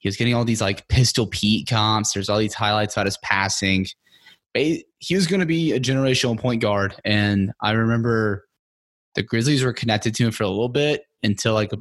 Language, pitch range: English, 105-130 Hz